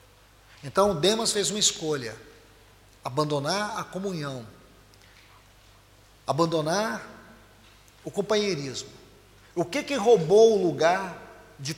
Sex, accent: male, Brazilian